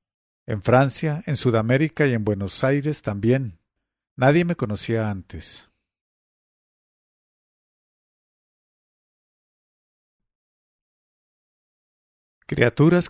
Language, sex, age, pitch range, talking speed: English, male, 50-69, 110-140 Hz, 65 wpm